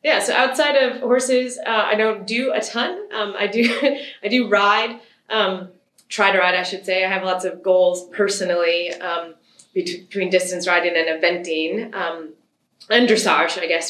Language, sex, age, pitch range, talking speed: English, female, 20-39, 180-225 Hz, 175 wpm